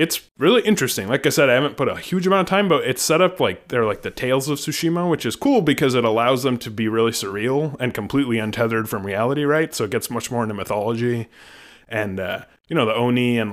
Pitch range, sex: 110-145 Hz, male